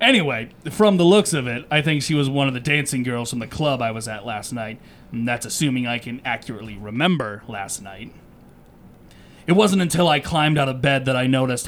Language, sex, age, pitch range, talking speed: English, male, 30-49, 115-155 Hz, 220 wpm